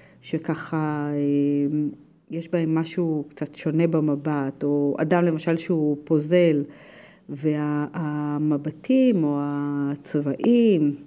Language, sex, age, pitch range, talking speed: Hebrew, female, 50-69, 150-195 Hz, 80 wpm